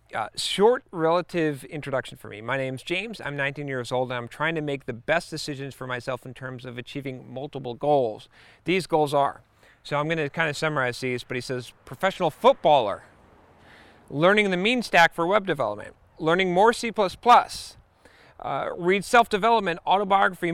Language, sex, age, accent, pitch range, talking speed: English, male, 40-59, American, 130-165 Hz, 170 wpm